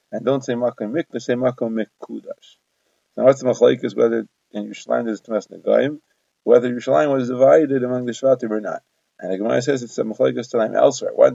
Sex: male